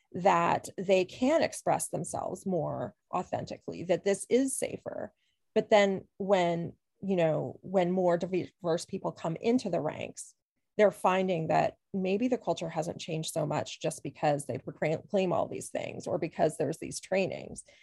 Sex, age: female, 30-49